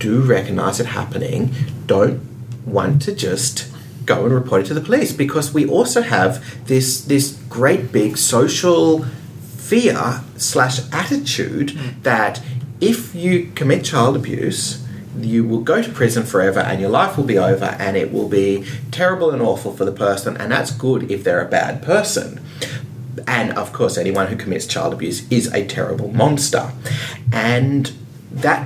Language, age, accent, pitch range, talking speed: English, 30-49, Australian, 115-145 Hz, 160 wpm